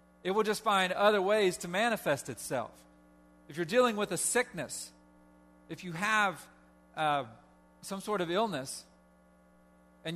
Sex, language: male, English